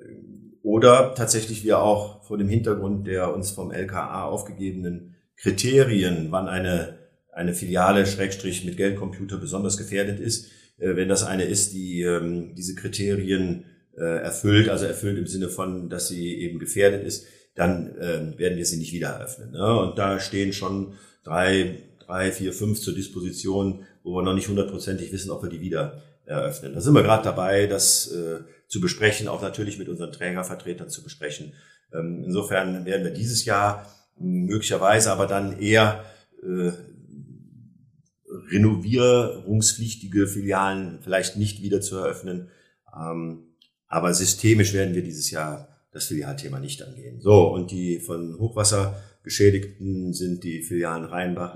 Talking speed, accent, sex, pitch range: 150 wpm, German, male, 90-105 Hz